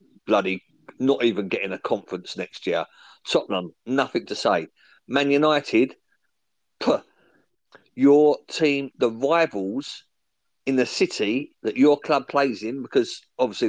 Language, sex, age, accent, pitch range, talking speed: English, male, 50-69, British, 125-165 Hz, 125 wpm